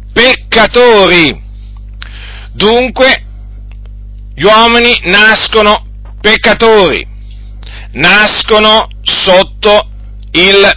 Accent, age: native, 50-69